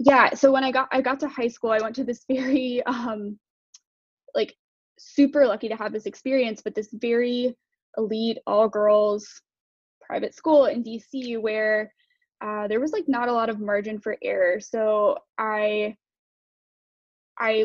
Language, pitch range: English, 215-270 Hz